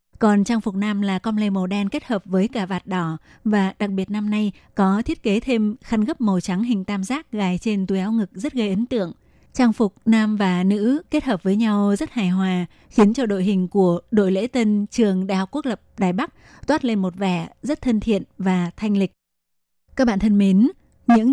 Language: Vietnamese